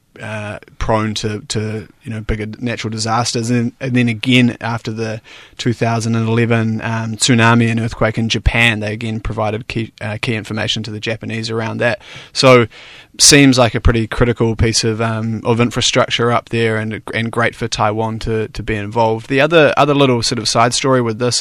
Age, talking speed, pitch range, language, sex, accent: 30-49, 195 wpm, 110-120 Hz, English, male, Australian